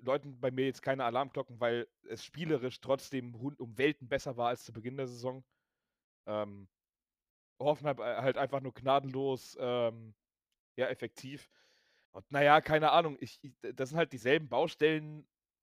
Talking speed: 155 wpm